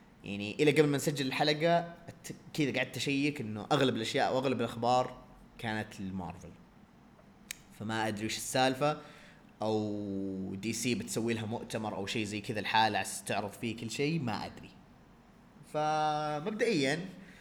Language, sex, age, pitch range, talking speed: Arabic, male, 20-39, 115-165 Hz, 140 wpm